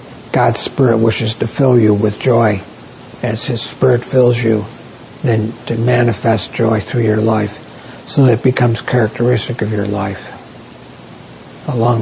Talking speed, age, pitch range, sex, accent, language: 145 wpm, 60-79, 110-125 Hz, male, American, English